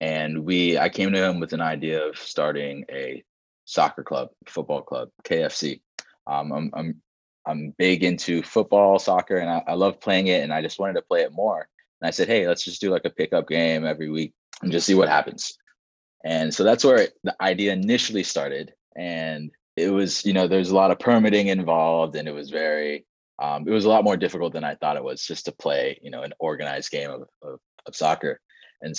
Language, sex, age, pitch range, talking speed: English, male, 20-39, 75-95 Hz, 220 wpm